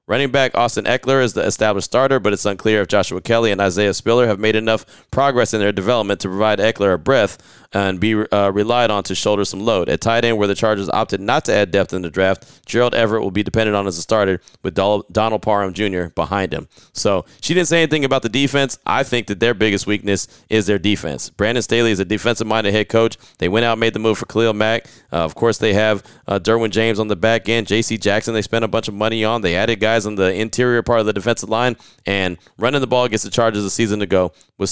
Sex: male